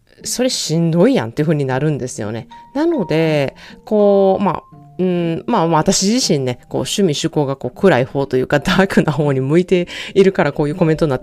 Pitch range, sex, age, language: 145-220 Hz, female, 30-49, Japanese